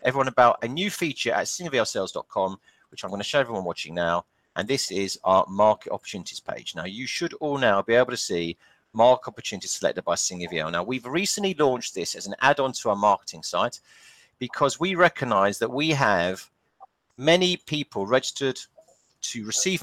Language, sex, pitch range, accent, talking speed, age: English, male, 115-150 Hz, British, 180 wpm, 40-59